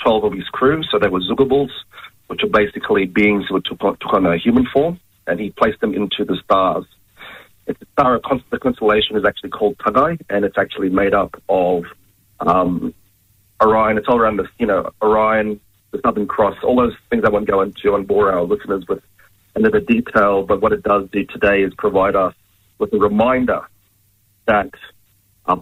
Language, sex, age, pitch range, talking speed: English, male, 40-59, 100-115 Hz, 185 wpm